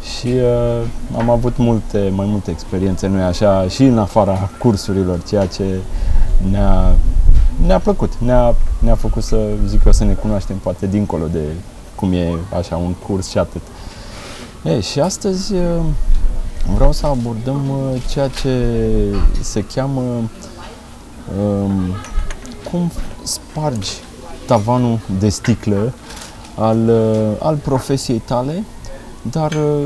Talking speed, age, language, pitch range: 125 wpm, 30-49, Romanian, 95-115 Hz